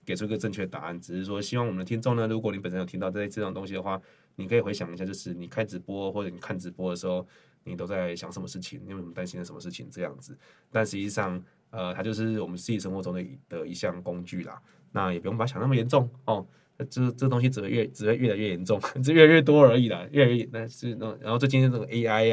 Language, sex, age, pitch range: Chinese, male, 20-39, 95-135 Hz